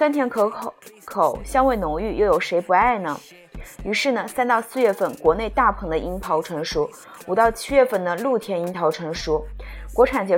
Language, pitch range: Chinese, 175-250 Hz